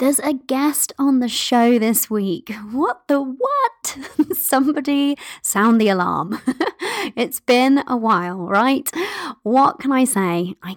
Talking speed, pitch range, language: 140 wpm, 190-265 Hz, English